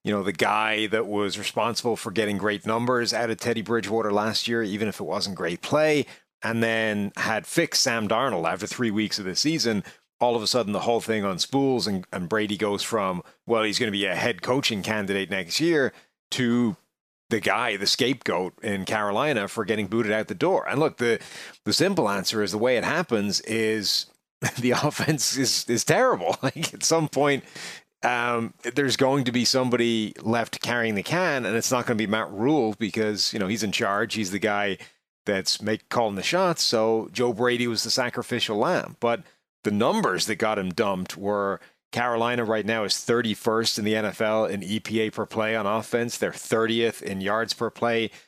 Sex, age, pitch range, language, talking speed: male, 30-49, 105-120 Hz, English, 200 wpm